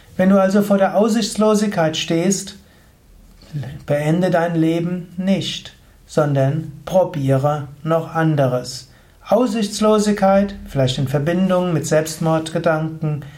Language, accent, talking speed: German, German, 95 wpm